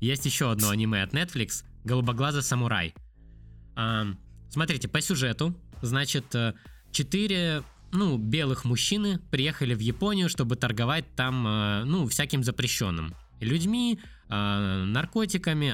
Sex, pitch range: male, 115-160 Hz